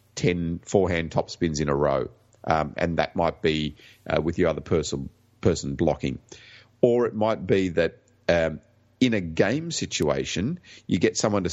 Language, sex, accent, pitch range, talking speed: English, male, Australian, 80-105 Hz, 165 wpm